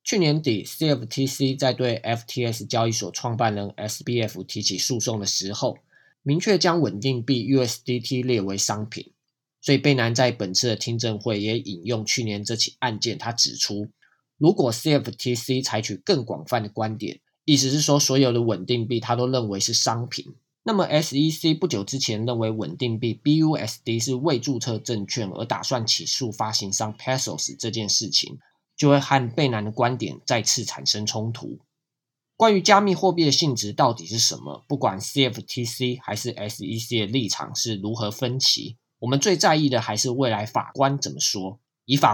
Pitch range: 110-140 Hz